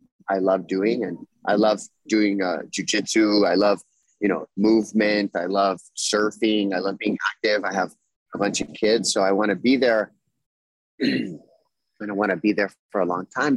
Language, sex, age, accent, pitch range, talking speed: English, male, 30-49, American, 100-120 Hz, 190 wpm